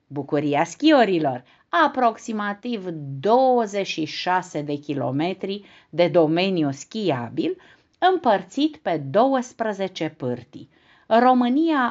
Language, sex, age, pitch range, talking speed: Romanian, female, 50-69, 155-250 Hz, 70 wpm